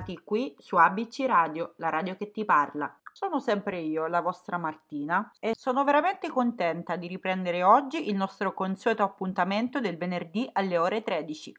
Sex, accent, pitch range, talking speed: female, native, 170-225 Hz, 160 wpm